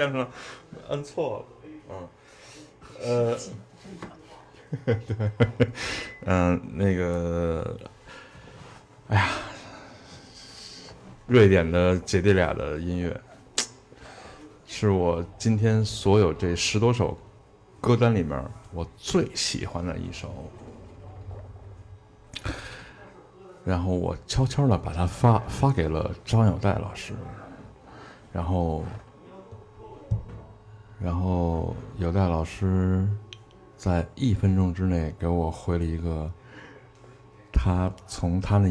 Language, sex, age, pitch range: Chinese, male, 60-79, 90-110 Hz